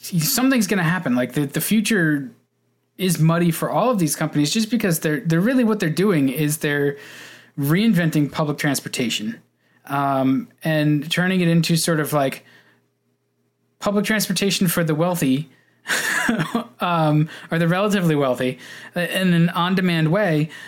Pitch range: 145-180 Hz